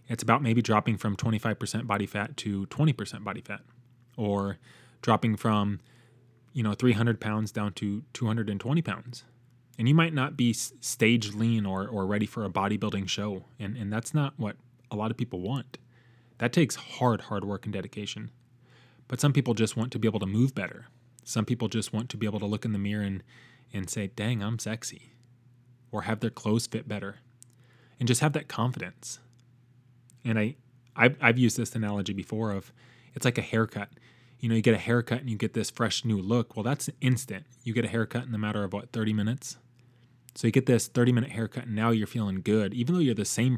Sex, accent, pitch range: male, American, 105-125 Hz